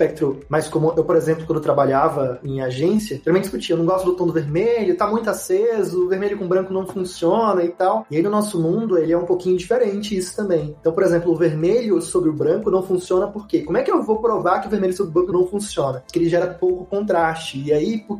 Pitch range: 165-195 Hz